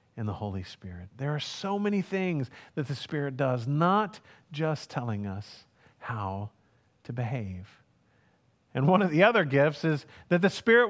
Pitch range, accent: 115-175 Hz, American